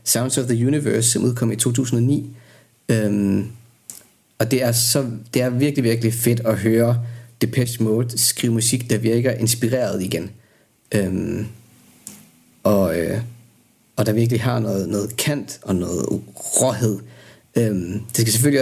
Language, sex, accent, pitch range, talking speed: Danish, male, native, 110-120 Hz, 145 wpm